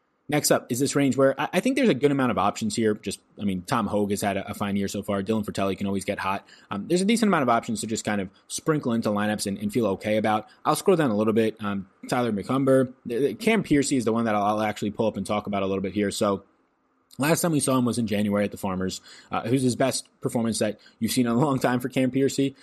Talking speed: 280 wpm